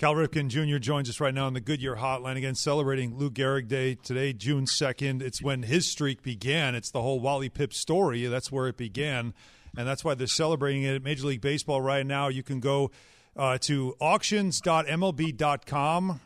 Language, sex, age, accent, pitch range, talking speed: English, male, 40-59, American, 135-170 Hz, 190 wpm